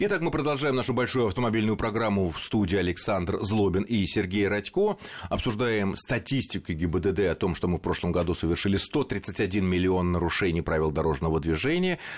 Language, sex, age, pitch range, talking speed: Russian, male, 30-49, 90-125 Hz, 155 wpm